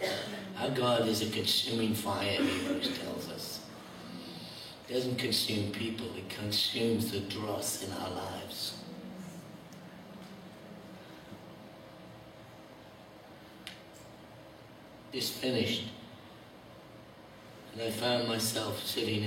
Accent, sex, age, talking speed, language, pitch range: British, male, 60-79, 85 wpm, English, 100-115 Hz